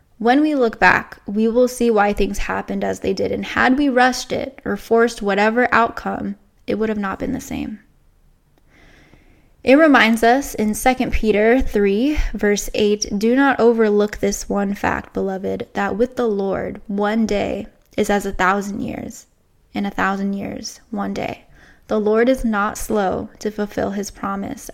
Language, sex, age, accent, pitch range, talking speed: English, female, 10-29, American, 200-245 Hz, 170 wpm